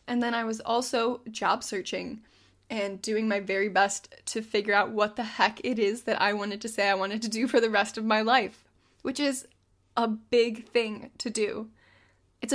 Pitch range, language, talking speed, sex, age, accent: 210-245 Hz, English, 205 wpm, female, 10-29, American